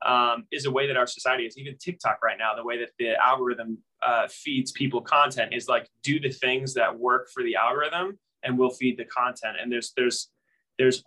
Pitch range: 120-135 Hz